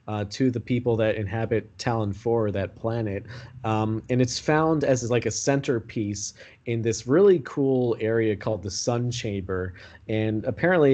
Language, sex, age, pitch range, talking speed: English, male, 20-39, 105-125 Hz, 160 wpm